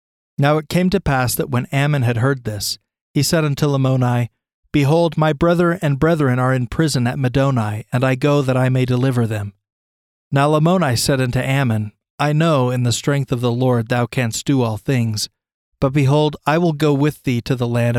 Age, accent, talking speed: 40-59, American, 205 wpm